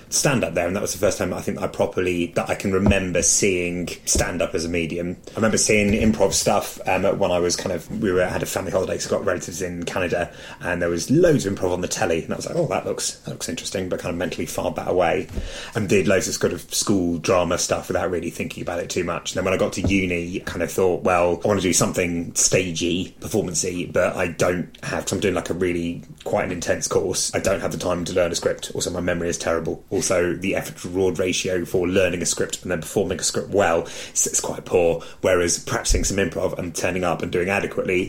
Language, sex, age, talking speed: English, male, 30-49, 255 wpm